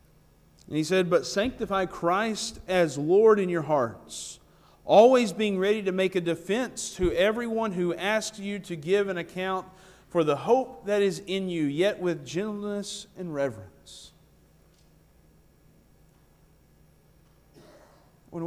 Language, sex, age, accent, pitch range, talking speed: English, male, 40-59, American, 155-190 Hz, 130 wpm